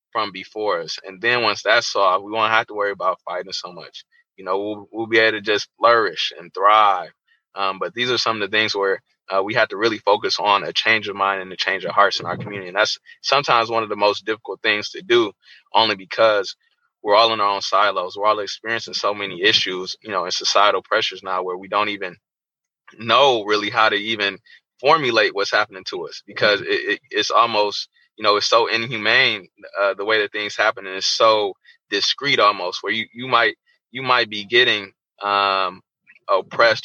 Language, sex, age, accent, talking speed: English, male, 20-39, American, 210 wpm